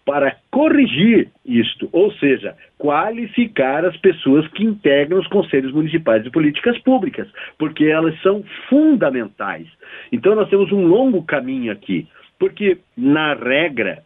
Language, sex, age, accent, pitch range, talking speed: Portuguese, male, 50-69, Brazilian, 145-225 Hz, 130 wpm